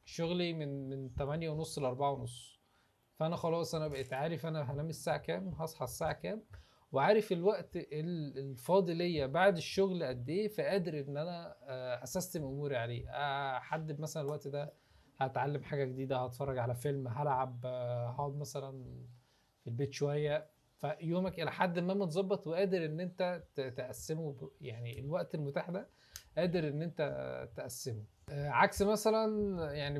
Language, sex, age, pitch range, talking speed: Arabic, male, 20-39, 135-170 Hz, 135 wpm